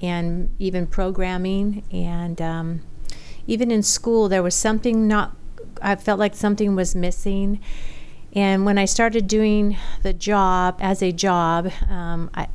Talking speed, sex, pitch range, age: 140 wpm, female, 170-205 Hz, 50-69